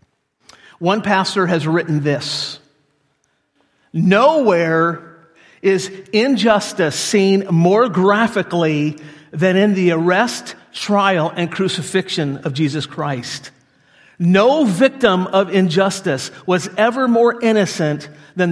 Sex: male